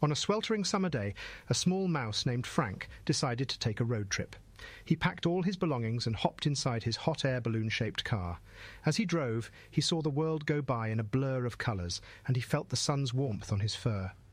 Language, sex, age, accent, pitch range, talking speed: English, male, 40-59, British, 105-135 Hz, 215 wpm